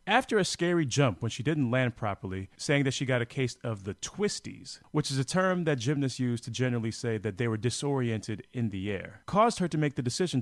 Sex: male